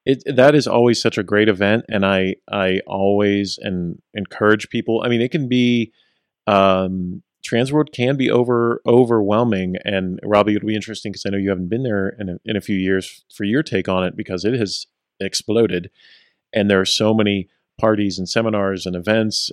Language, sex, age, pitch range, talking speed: English, male, 30-49, 95-110 Hz, 195 wpm